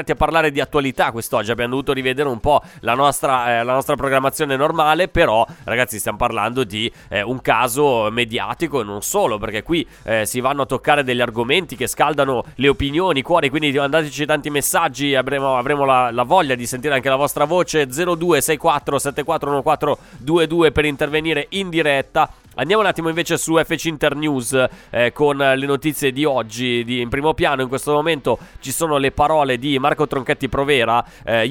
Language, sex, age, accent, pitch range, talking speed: Italian, male, 20-39, native, 120-155 Hz, 185 wpm